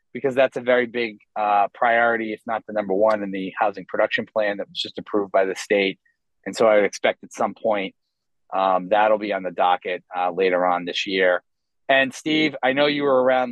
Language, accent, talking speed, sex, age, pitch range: English, American, 220 wpm, male, 30-49, 100-135 Hz